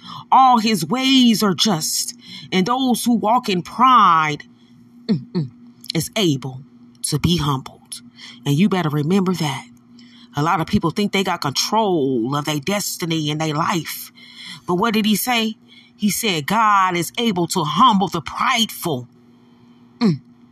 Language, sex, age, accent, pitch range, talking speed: English, female, 30-49, American, 140-235 Hz, 150 wpm